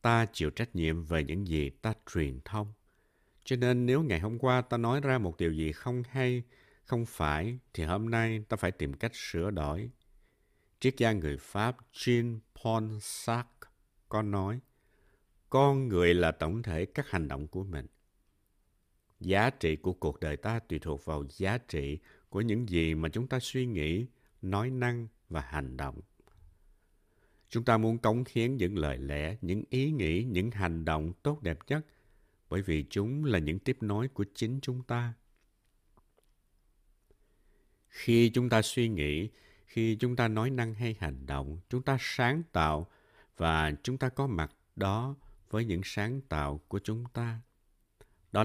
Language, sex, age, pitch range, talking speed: Vietnamese, male, 60-79, 85-120 Hz, 170 wpm